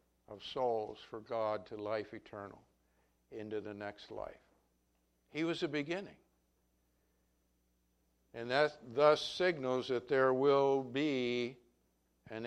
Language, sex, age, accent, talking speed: English, male, 60-79, American, 115 wpm